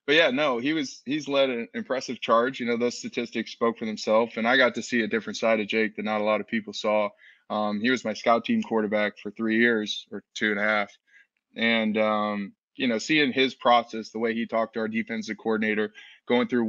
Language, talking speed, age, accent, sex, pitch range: English, 235 wpm, 20-39, American, male, 110-125 Hz